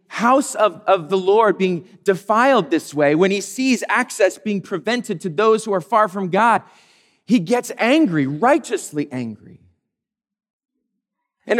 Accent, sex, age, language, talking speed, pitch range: American, male, 40-59, English, 145 wpm, 180-250 Hz